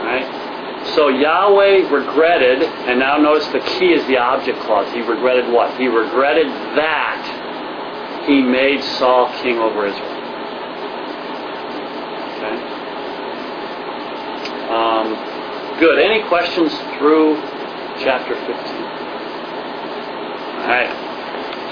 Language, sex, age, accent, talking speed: English, male, 40-59, American, 100 wpm